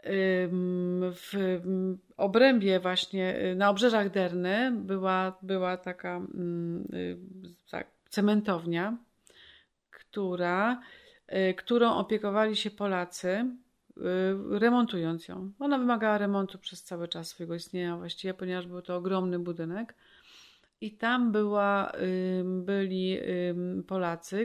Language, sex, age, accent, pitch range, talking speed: Polish, female, 40-59, native, 180-210 Hz, 85 wpm